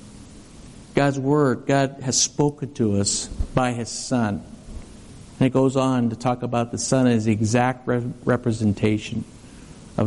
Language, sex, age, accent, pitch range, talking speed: English, male, 60-79, American, 125-165 Hz, 145 wpm